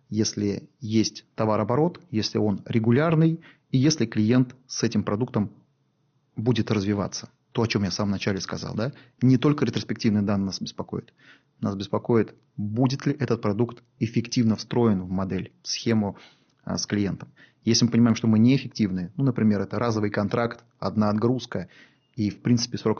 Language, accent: Russian, native